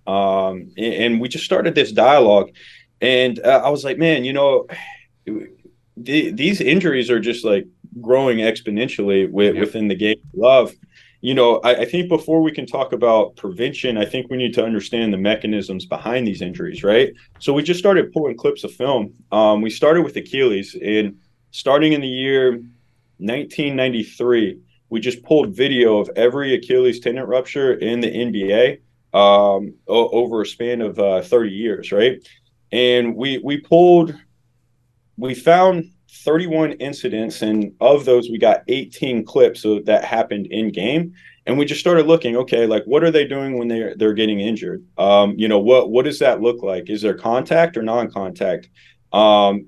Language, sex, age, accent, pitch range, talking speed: English, male, 20-39, American, 110-145 Hz, 175 wpm